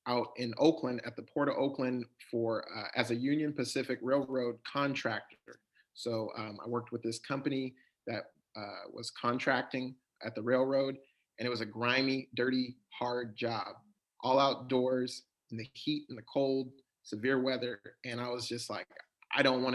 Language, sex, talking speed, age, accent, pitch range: English, male, 170 wpm, 30-49, American, 115-135 Hz